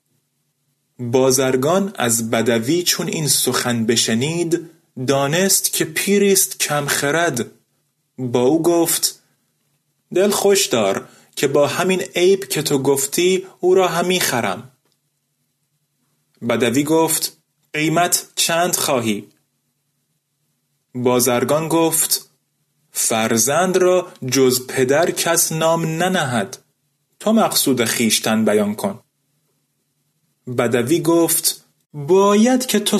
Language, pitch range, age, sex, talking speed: Persian, 130-180 Hz, 30-49, male, 95 wpm